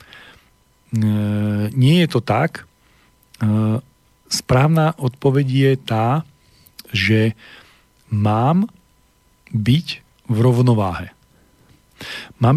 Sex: male